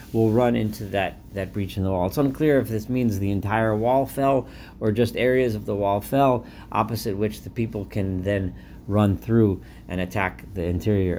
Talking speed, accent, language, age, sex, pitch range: 200 wpm, American, English, 40-59, male, 95-125 Hz